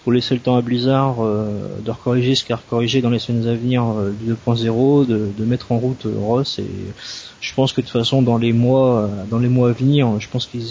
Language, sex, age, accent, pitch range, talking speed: French, male, 20-39, French, 115-130 Hz, 260 wpm